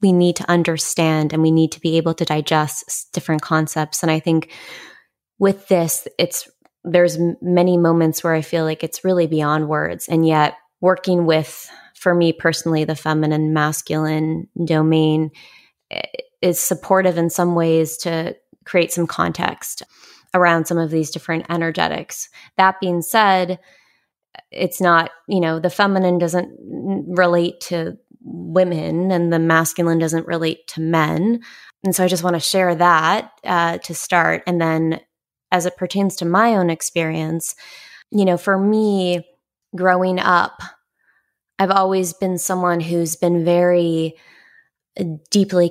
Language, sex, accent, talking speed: English, female, American, 145 wpm